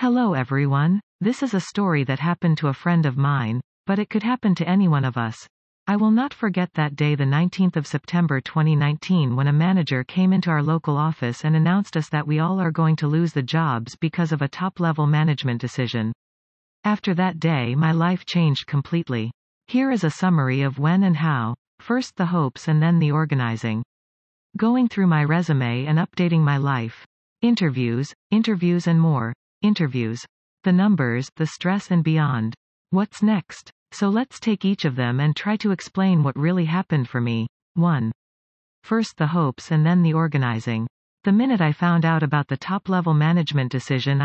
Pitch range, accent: 135-185 Hz, American